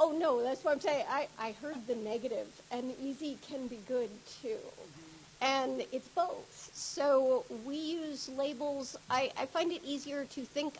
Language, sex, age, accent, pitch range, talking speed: English, female, 50-69, American, 235-280 Hz, 170 wpm